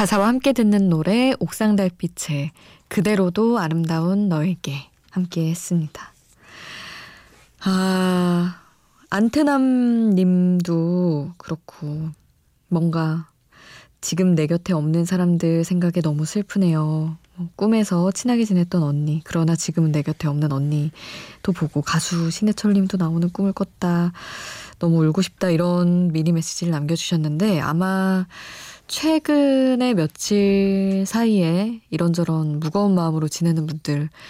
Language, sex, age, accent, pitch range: Korean, female, 20-39, native, 160-200 Hz